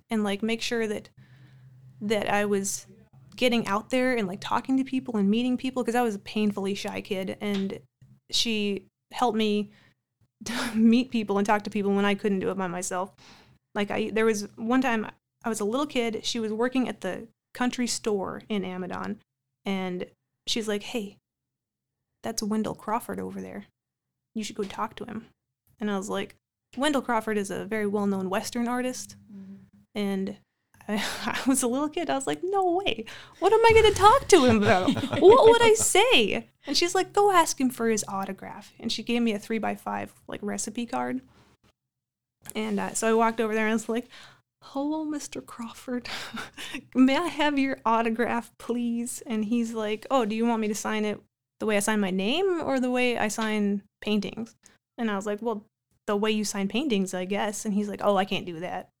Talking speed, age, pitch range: 200 wpm, 20-39, 200-245 Hz